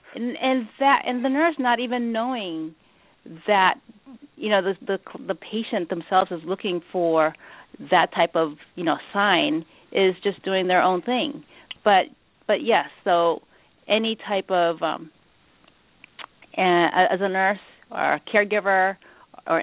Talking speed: 145 wpm